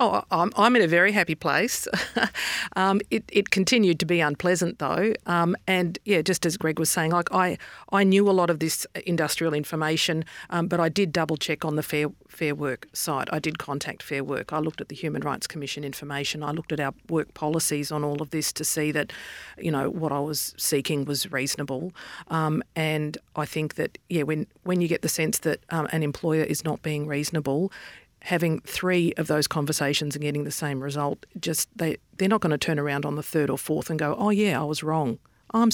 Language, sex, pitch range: English, female, 150-175 Hz